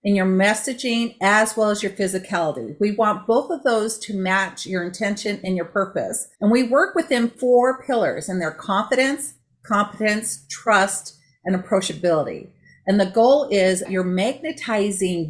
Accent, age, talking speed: American, 50-69, 155 wpm